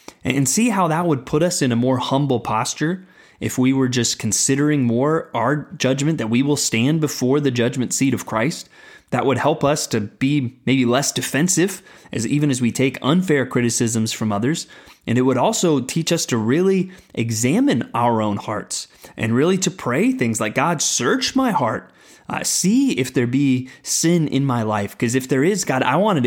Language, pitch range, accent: English, 125-185 Hz, American